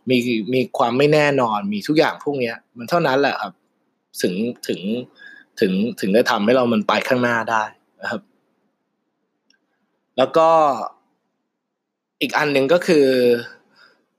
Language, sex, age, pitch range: Thai, male, 20-39, 125-160 Hz